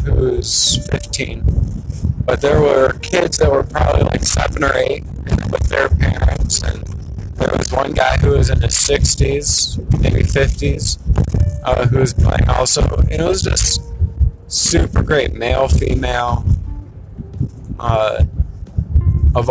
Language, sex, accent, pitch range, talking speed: English, male, American, 95-130 Hz, 130 wpm